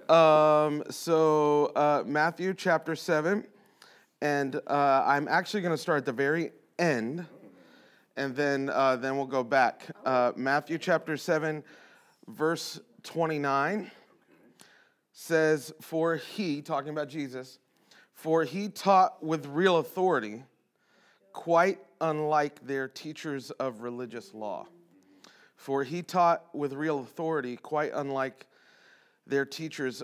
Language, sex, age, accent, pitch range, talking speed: English, male, 30-49, American, 130-160 Hz, 120 wpm